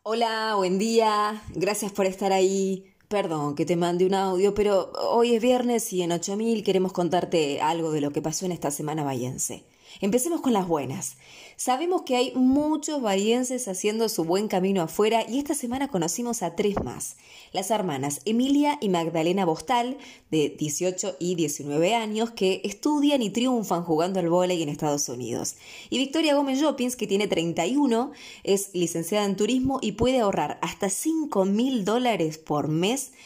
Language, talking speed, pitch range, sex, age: Spanish, 165 wpm, 165-230 Hz, female, 20-39